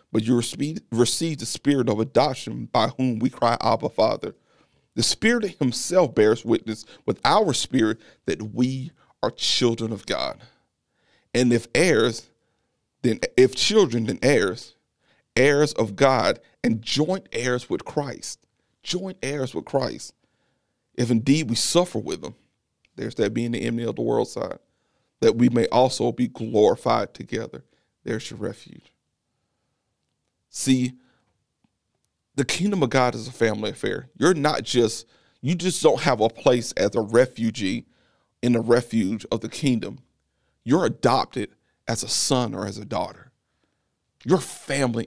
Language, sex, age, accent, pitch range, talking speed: English, male, 40-59, American, 115-140 Hz, 145 wpm